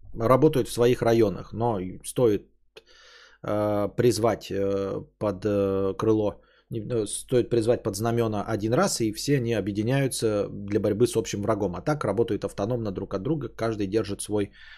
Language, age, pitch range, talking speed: Bulgarian, 20-39, 105-125 Hz, 155 wpm